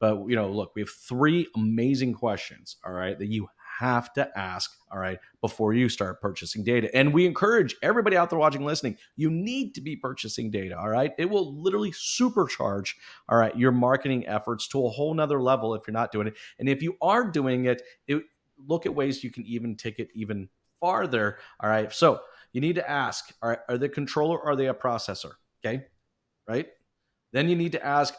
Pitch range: 105-135 Hz